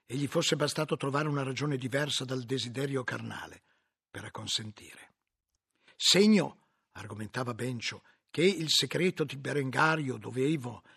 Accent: native